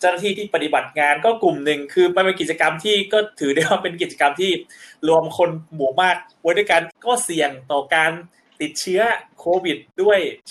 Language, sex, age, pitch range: Thai, male, 20-39, 140-185 Hz